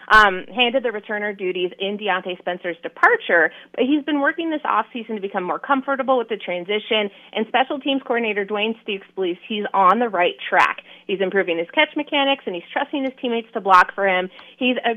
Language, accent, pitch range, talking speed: English, American, 195-250 Hz, 200 wpm